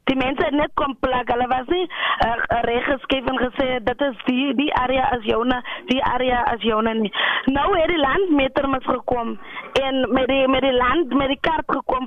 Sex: female